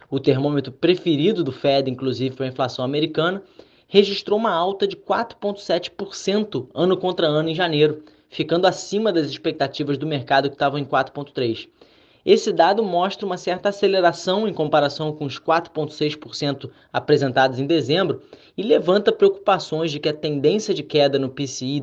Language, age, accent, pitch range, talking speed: Portuguese, 20-39, Brazilian, 140-180 Hz, 150 wpm